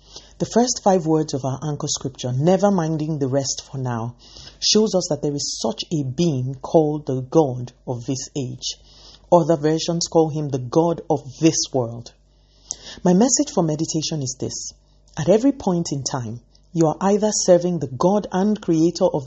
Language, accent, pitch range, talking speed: English, Nigerian, 140-180 Hz, 180 wpm